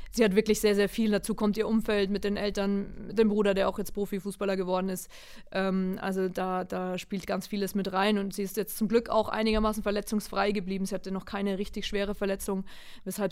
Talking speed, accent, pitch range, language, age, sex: 220 wpm, German, 190-205 Hz, German, 20-39, female